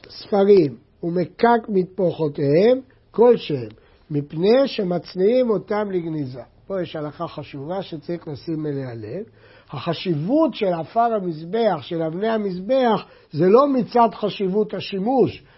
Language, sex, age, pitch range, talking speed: Hebrew, male, 60-79, 160-225 Hz, 110 wpm